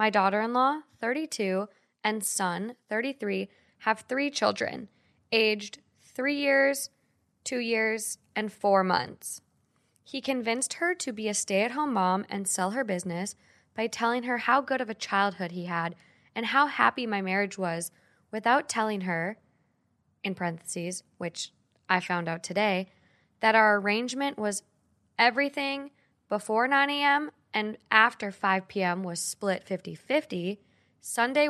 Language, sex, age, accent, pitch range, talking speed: English, female, 10-29, American, 190-240 Hz, 135 wpm